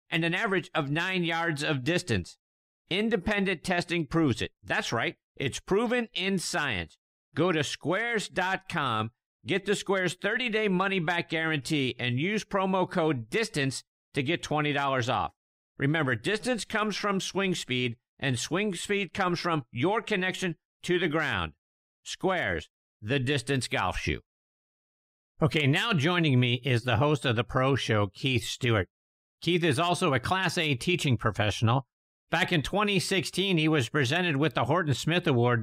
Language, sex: English, male